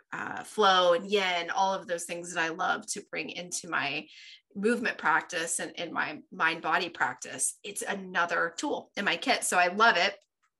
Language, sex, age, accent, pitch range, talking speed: English, female, 20-39, American, 185-255 Hz, 180 wpm